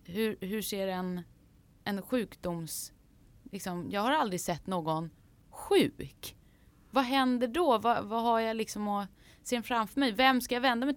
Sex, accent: female, native